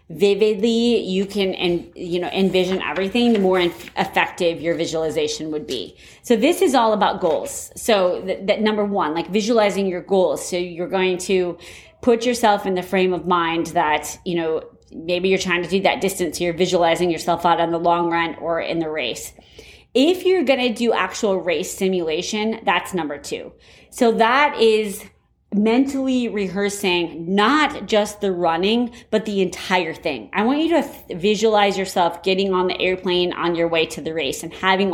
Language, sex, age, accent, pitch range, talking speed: English, female, 30-49, American, 170-210 Hz, 180 wpm